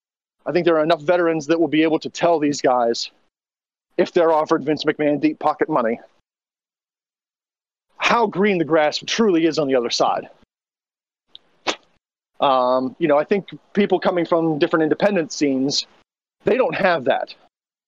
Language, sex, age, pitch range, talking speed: English, male, 30-49, 150-185 Hz, 160 wpm